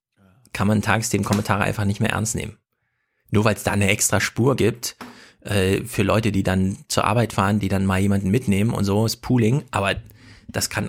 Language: German